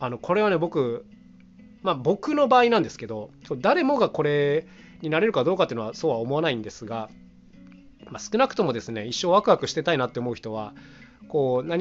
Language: Japanese